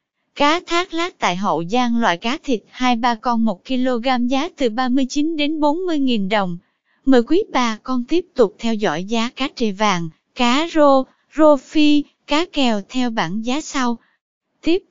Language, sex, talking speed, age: Vietnamese, female, 165 wpm, 20-39